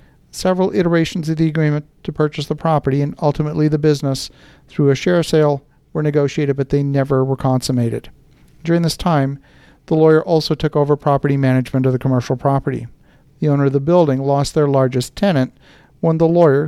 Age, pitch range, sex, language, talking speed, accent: 50-69, 135-155 Hz, male, English, 180 wpm, American